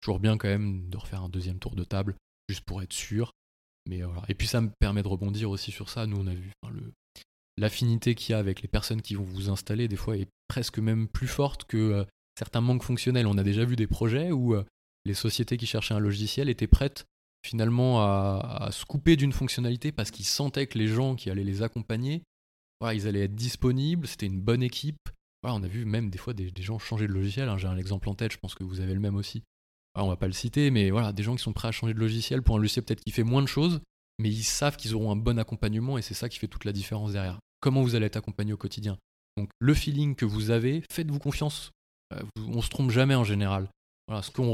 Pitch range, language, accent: 100-120 Hz, French, French